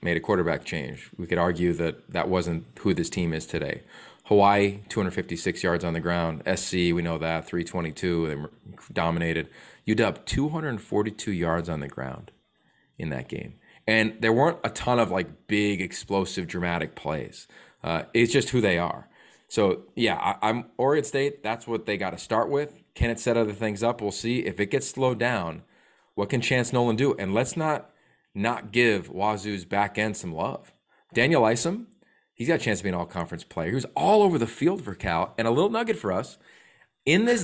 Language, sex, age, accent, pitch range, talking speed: English, male, 20-39, American, 95-150 Hz, 195 wpm